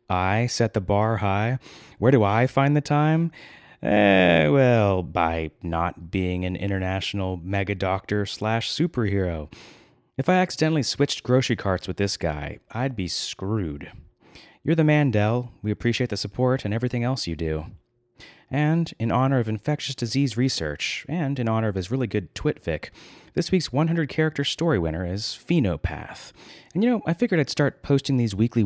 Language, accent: English, American